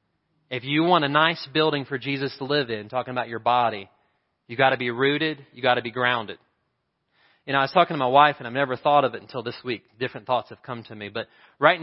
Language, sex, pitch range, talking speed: English, male, 120-145 Hz, 255 wpm